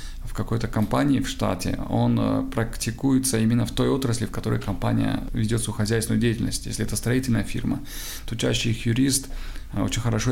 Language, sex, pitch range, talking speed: Russian, male, 95-120 Hz, 155 wpm